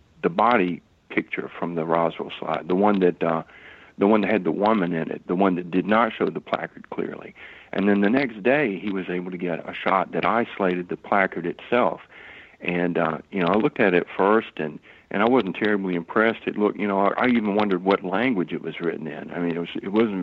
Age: 60-79